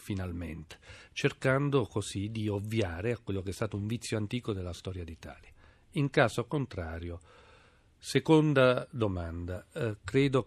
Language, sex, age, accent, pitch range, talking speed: Italian, male, 40-59, native, 100-125 Hz, 130 wpm